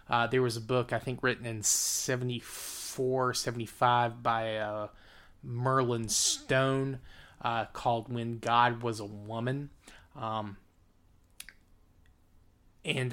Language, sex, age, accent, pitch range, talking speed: English, male, 20-39, American, 110-130 Hz, 120 wpm